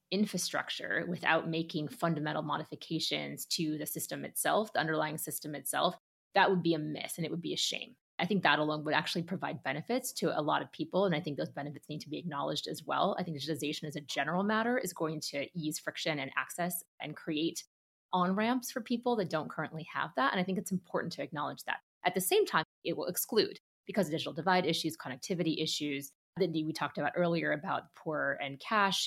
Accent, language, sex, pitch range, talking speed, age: American, English, female, 150-185 Hz, 210 wpm, 20-39